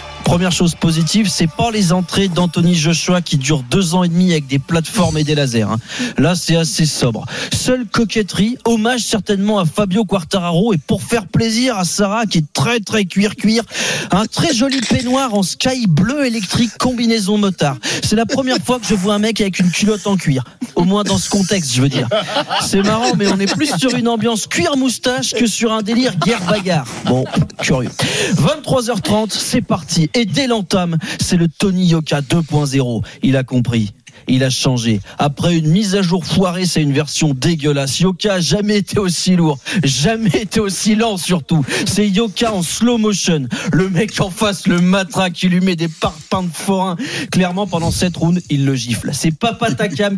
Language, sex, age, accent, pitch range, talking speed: French, male, 40-59, French, 155-210 Hz, 195 wpm